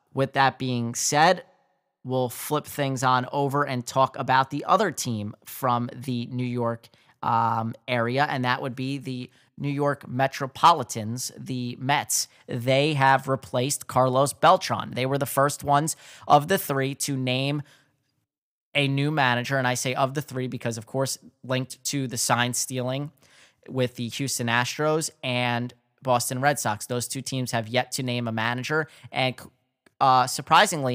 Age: 20-39